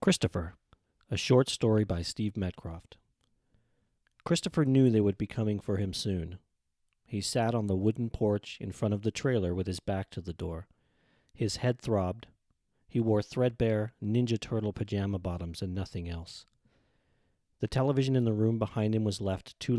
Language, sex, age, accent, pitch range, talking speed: English, male, 40-59, American, 95-115 Hz, 170 wpm